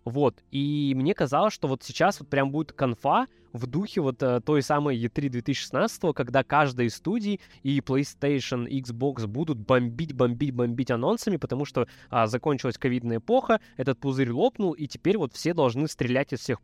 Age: 20-39